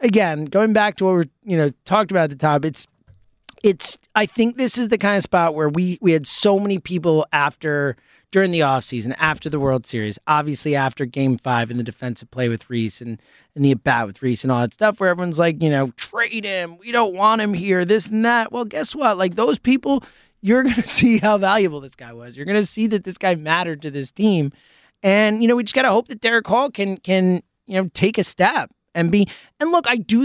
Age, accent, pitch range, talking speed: 30-49, American, 165-240 Hz, 245 wpm